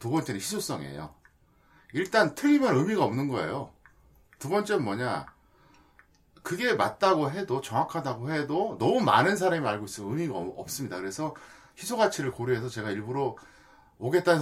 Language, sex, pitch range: Korean, male, 110-165 Hz